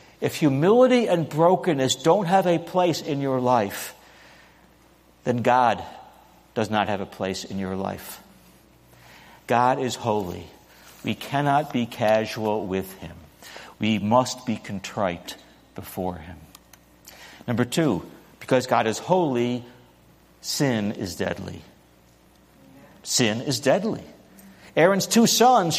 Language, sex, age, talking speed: English, male, 60-79, 120 wpm